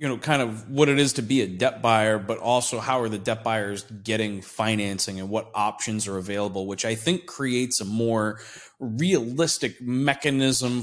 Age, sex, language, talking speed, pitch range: 20-39, male, English, 190 wpm, 115-140 Hz